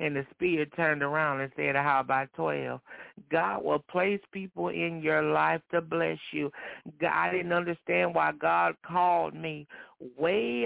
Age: 60-79